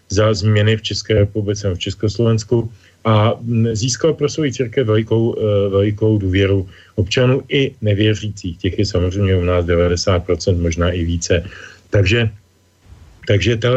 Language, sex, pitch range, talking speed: Slovak, male, 100-125 Hz, 130 wpm